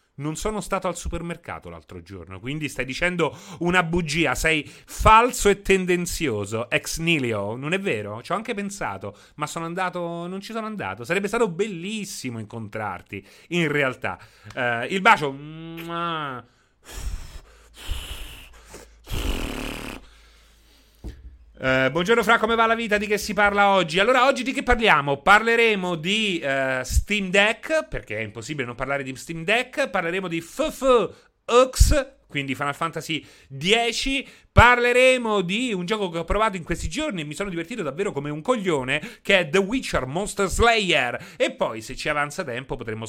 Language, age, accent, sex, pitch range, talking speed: Italian, 30-49, native, male, 135-205 Hz, 150 wpm